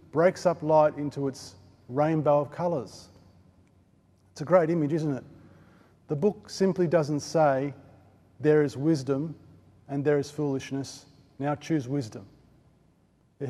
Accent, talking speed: Australian, 135 wpm